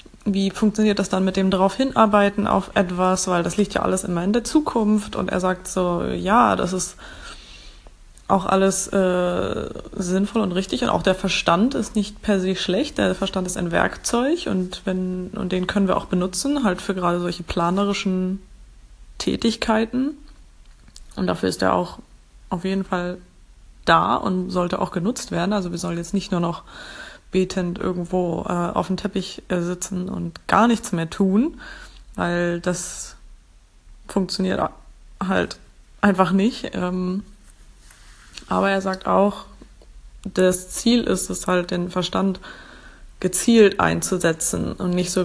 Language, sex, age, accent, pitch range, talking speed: English, female, 20-39, German, 180-200 Hz, 155 wpm